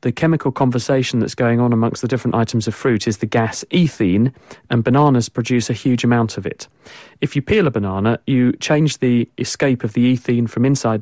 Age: 40-59